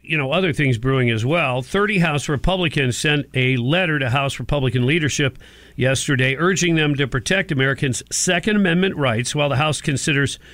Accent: American